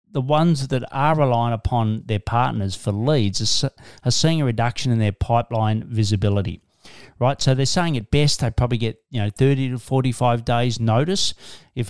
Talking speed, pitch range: 180 wpm, 110-140 Hz